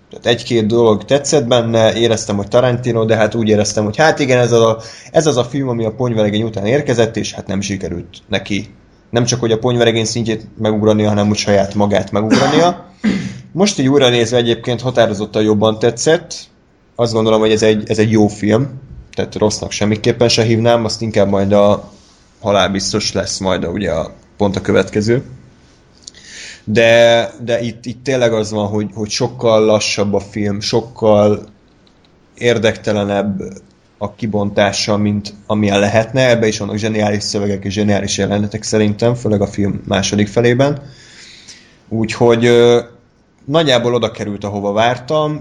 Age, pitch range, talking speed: 20-39, 105-120 Hz, 160 wpm